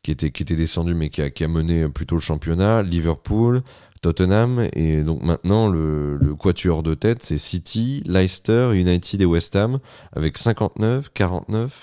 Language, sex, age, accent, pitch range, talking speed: French, male, 30-49, French, 80-95 Hz, 170 wpm